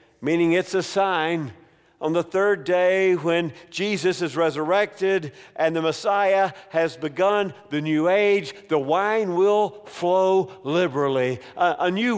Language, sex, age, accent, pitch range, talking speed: English, male, 50-69, American, 140-185 Hz, 140 wpm